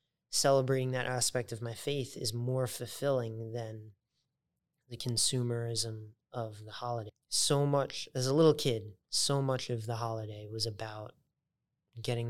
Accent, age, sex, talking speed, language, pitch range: American, 20-39, male, 140 wpm, English, 115-135 Hz